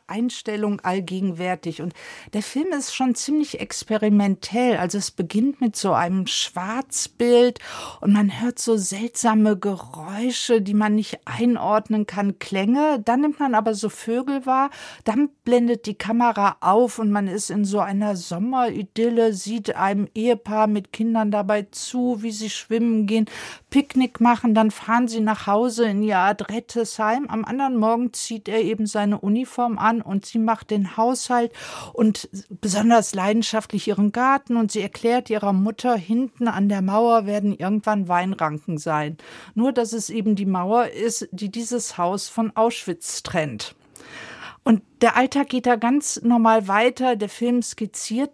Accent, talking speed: German, 155 wpm